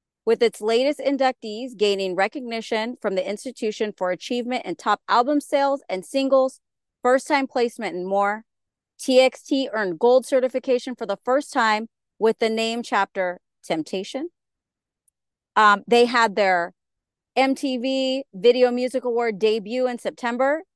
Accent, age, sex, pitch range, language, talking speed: American, 30-49, female, 200-260 Hz, English, 135 wpm